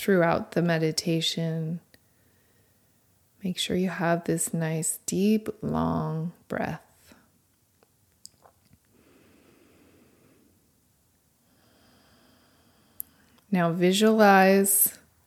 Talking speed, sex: 55 wpm, female